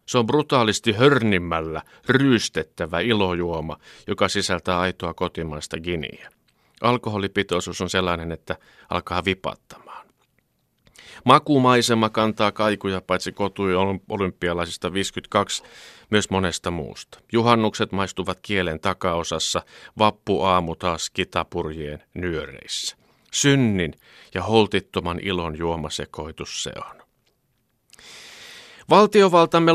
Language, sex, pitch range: Finnish, male, 85-115 Hz